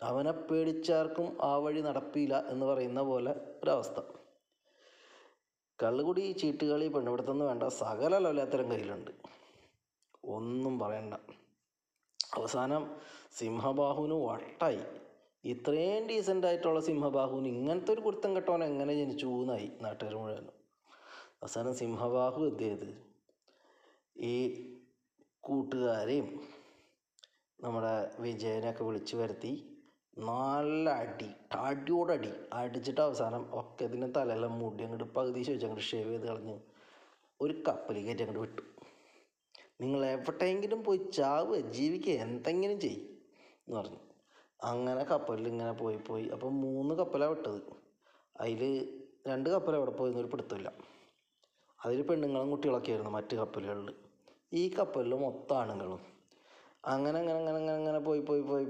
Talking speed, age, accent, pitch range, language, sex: 100 wpm, 20-39, native, 120-160 Hz, Malayalam, male